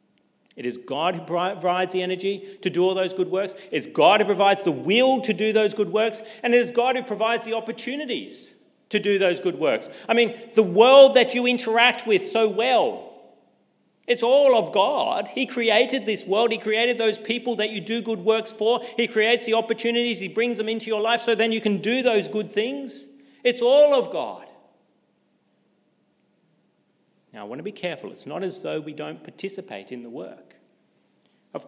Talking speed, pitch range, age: 195 wpm, 185-235 Hz, 40-59